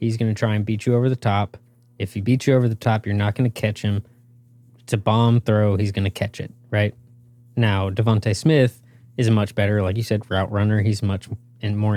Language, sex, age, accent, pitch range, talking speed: English, male, 20-39, American, 105-120 Hz, 245 wpm